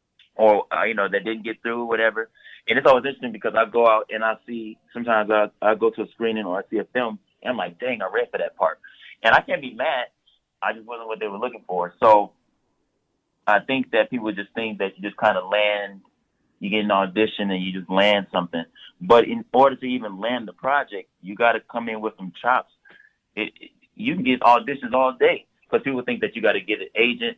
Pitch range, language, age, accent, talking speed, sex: 110-150 Hz, English, 30-49, American, 240 wpm, male